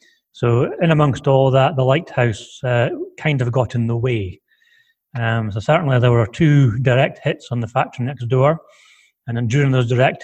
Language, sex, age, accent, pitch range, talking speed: English, male, 30-49, British, 110-140 Hz, 190 wpm